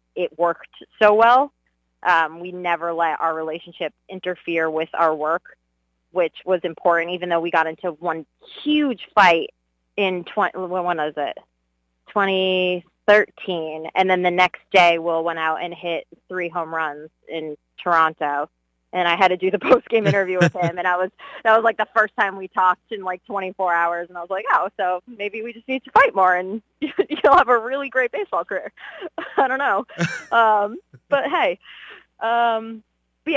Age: 20-39